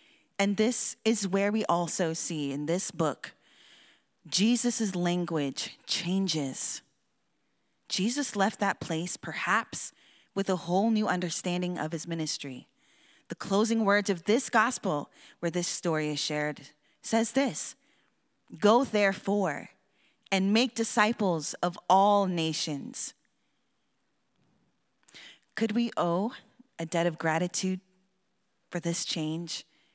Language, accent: English, American